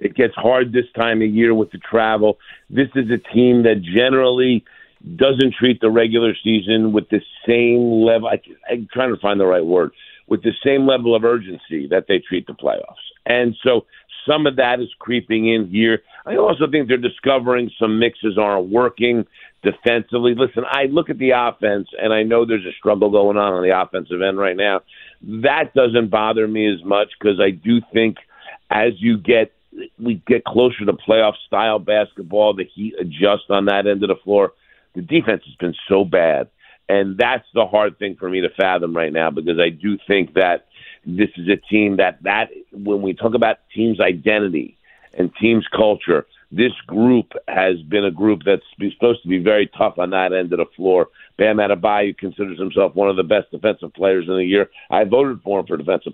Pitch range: 100-120 Hz